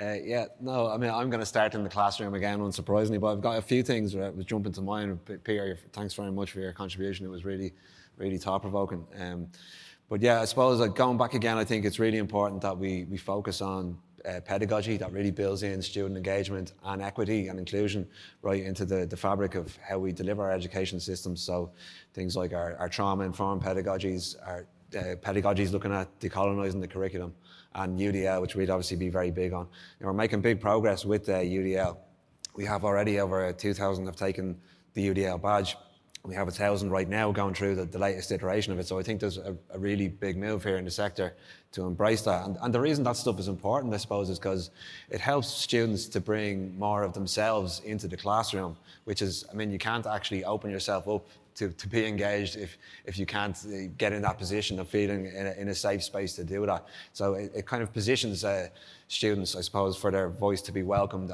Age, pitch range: 20-39, 95-105 Hz